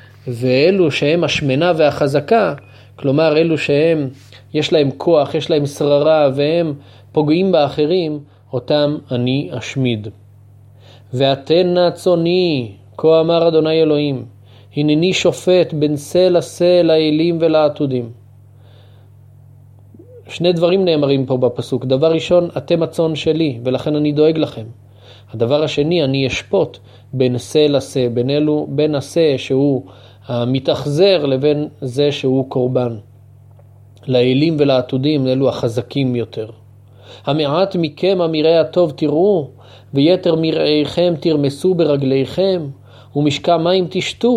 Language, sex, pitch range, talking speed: Hebrew, male, 120-160 Hz, 110 wpm